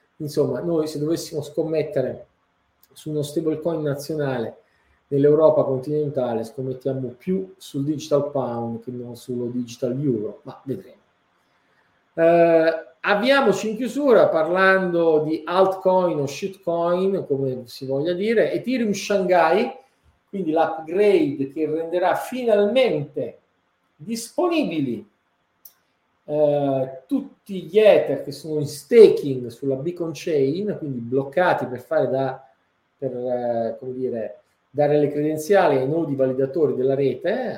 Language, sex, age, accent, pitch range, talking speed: Italian, male, 40-59, native, 130-175 Hz, 115 wpm